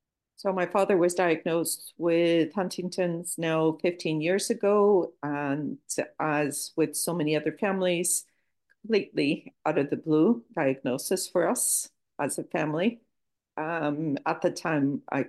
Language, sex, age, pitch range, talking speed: English, female, 50-69, 140-180 Hz, 135 wpm